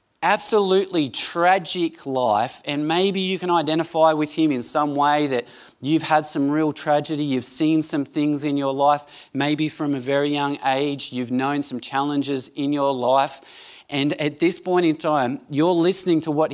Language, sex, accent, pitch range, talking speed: English, male, Australian, 140-180 Hz, 180 wpm